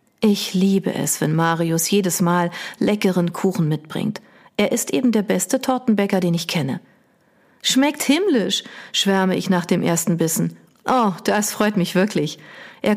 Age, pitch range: 40-59, 170-220 Hz